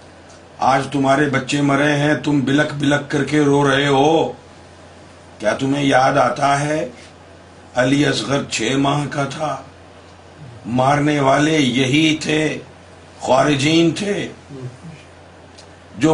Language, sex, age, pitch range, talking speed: Urdu, male, 50-69, 95-145 Hz, 115 wpm